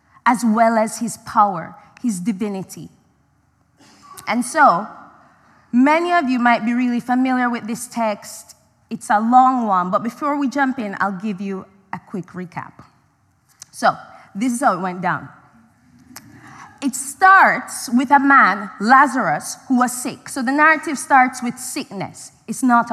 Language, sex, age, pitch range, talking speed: English, female, 20-39, 200-265 Hz, 150 wpm